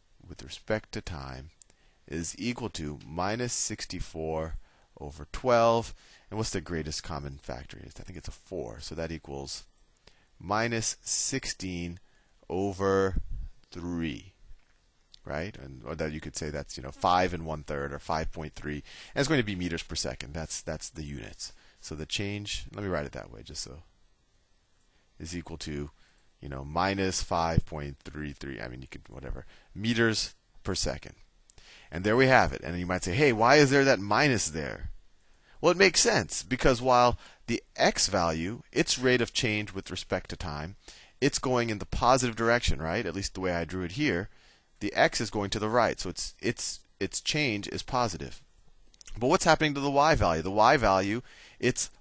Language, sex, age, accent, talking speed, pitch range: English, male, 30-49, American, 185 wpm, 80-110 Hz